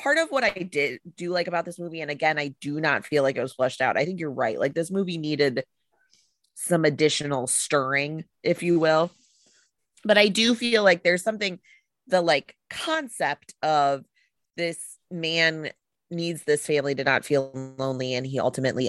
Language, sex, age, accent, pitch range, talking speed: English, female, 20-39, American, 140-180 Hz, 185 wpm